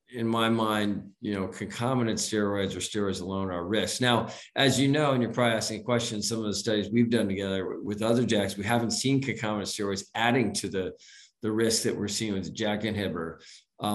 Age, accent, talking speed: 50-69, American, 215 wpm